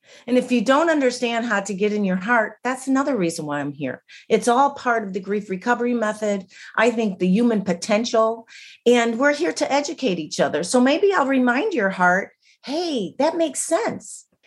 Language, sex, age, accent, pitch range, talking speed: English, female, 40-59, American, 190-270 Hz, 195 wpm